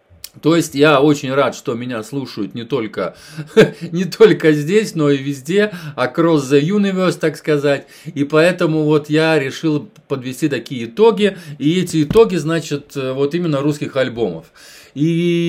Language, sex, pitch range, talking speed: Russian, male, 140-170 Hz, 145 wpm